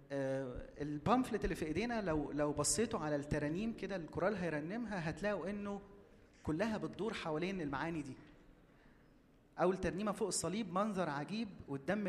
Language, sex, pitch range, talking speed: Arabic, male, 145-195 Hz, 130 wpm